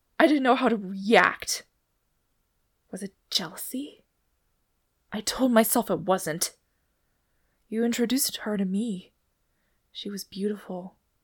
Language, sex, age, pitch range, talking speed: English, female, 20-39, 215-305 Hz, 115 wpm